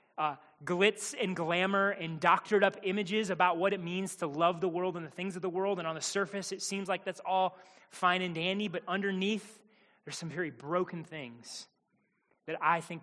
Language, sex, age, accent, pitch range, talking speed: English, male, 30-49, American, 170-215 Hz, 205 wpm